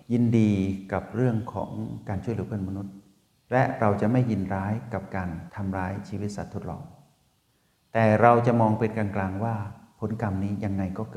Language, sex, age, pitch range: Thai, male, 60-79, 95-120 Hz